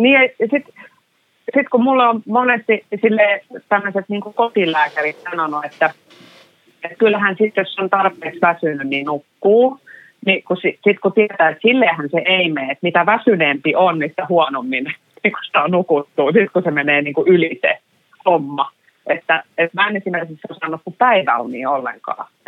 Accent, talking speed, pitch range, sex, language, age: native, 160 wpm, 155-220 Hz, female, Finnish, 30-49